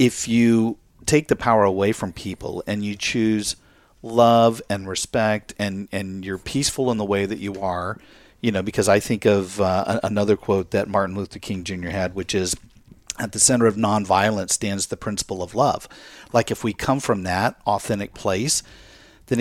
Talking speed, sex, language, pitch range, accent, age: 185 wpm, male, English, 100-120 Hz, American, 50-69